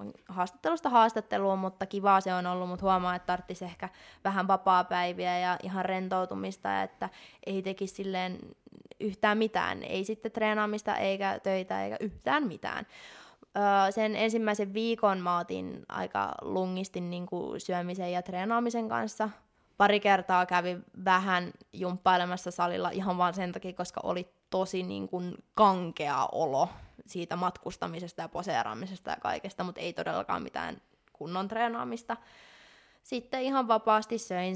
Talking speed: 135 wpm